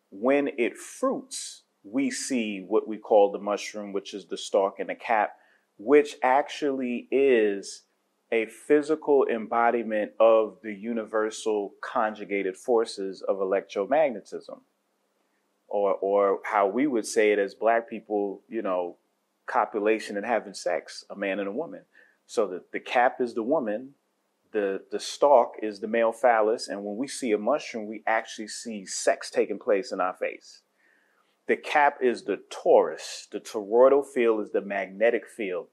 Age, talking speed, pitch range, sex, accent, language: 30-49, 155 wpm, 105-150 Hz, male, American, English